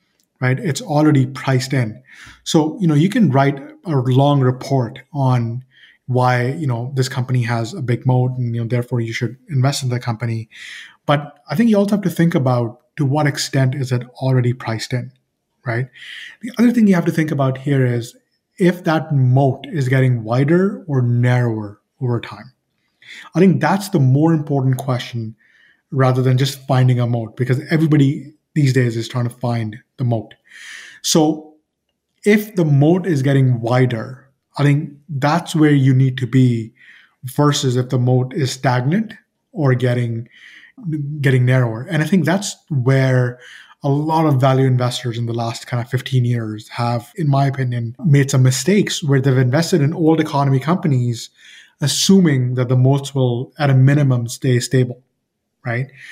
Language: English